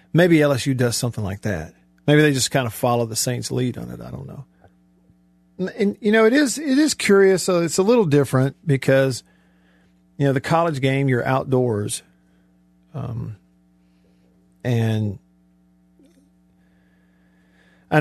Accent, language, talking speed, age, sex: American, English, 150 wpm, 50-69, male